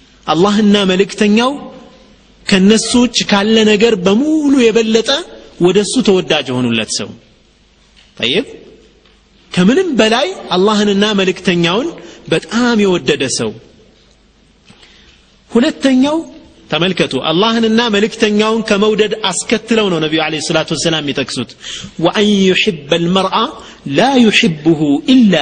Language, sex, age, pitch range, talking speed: Amharic, male, 40-59, 165-225 Hz, 90 wpm